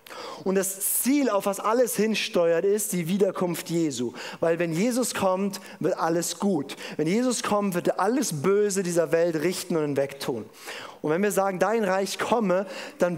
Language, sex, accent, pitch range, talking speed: German, male, German, 155-205 Hz, 180 wpm